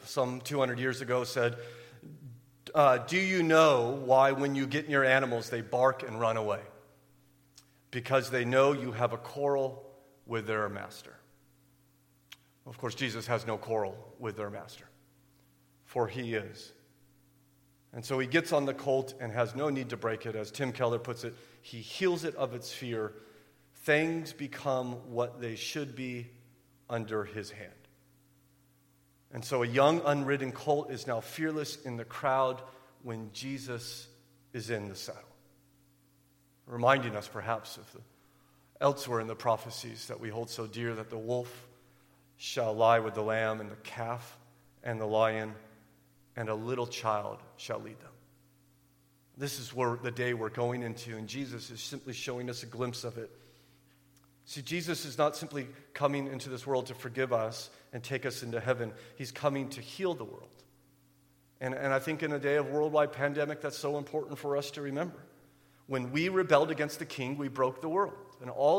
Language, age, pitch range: English, 40-59, 120-140 Hz